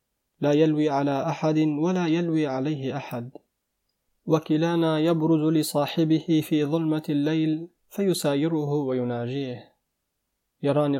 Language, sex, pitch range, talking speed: Arabic, male, 135-155 Hz, 95 wpm